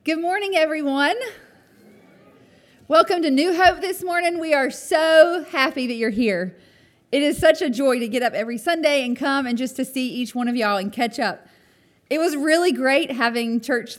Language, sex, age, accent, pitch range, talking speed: English, female, 30-49, American, 215-275 Hz, 195 wpm